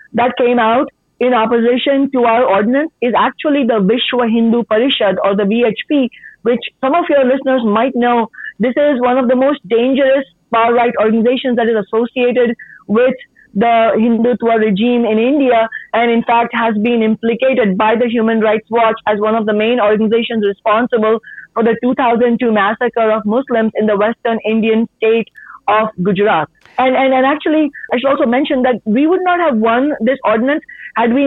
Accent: Indian